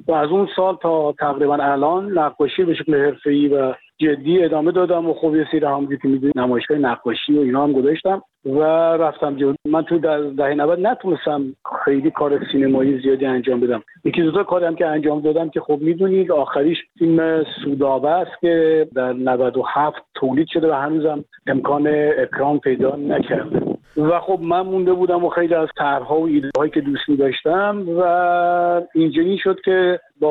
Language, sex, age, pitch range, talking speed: Persian, male, 50-69, 140-170 Hz, 180 wpm